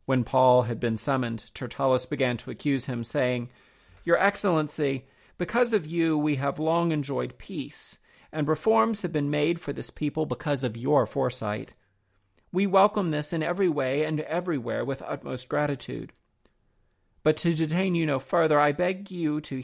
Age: 40-59